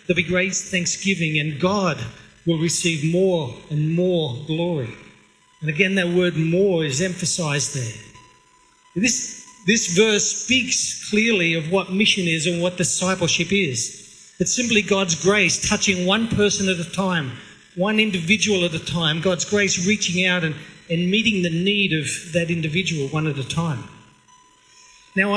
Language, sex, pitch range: English, male, 155-200 Hz